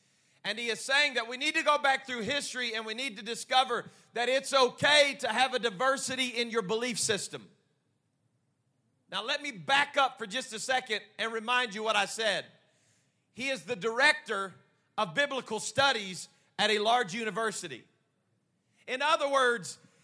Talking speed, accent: 170 wpm, American